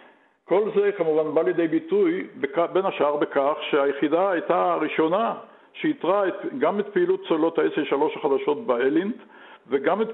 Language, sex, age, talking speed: Hebrew, male, 50-69, 135 wpm